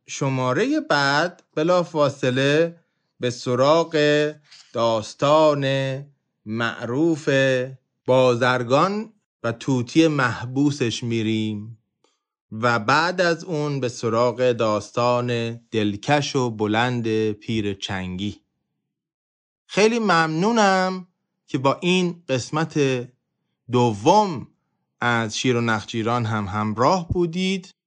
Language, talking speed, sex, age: Persian, 85 wpm, male, 30-49